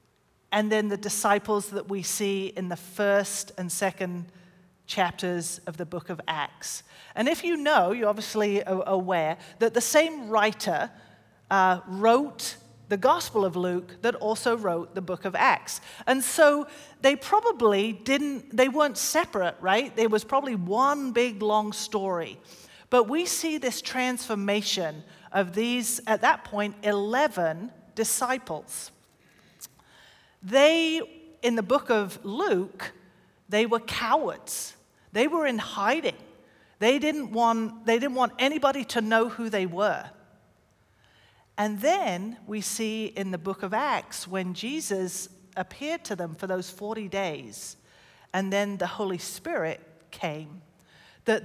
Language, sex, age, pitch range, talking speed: English, female, 40-59, 185-240 Hz, 140 wpm